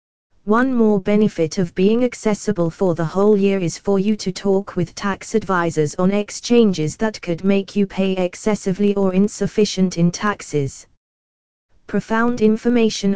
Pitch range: 170-210 Hz